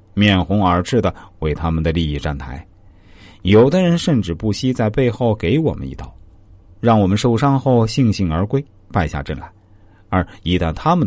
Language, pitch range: Chinese, 80-110 Hz